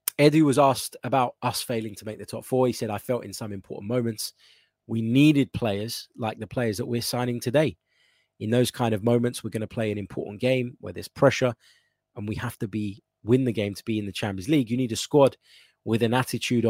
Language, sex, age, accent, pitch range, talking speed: English, male, 20-39, British, 100-120 Hz, 235 wpm